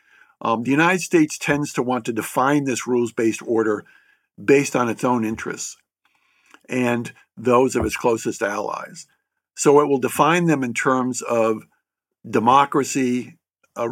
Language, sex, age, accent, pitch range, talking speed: English, male, 50-69, American, 115-140 Hz, 140 wpm